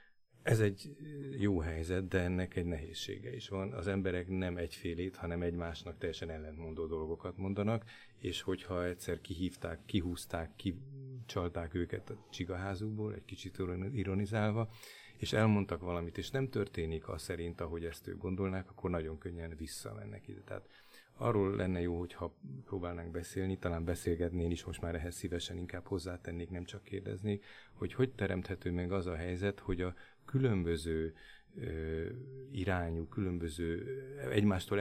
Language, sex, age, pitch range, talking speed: Hungarian, male, 30-49, 85-100 Hz, 140 wpm